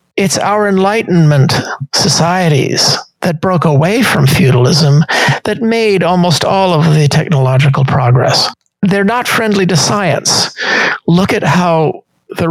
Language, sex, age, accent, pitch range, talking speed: English, male, 50-69, American, 145-185 Hz, 125 wpm